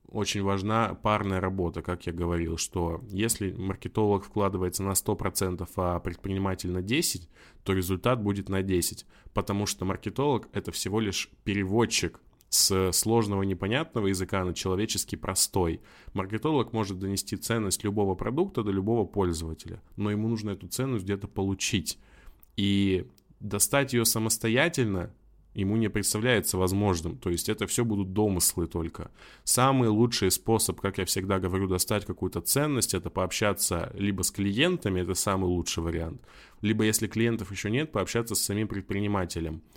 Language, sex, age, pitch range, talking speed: Russian, male, 20-39, 90-110 Hz, 145 wpm